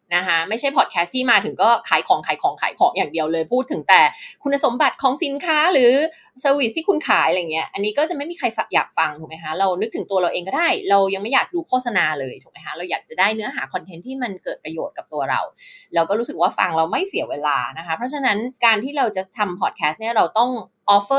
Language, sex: Thai, female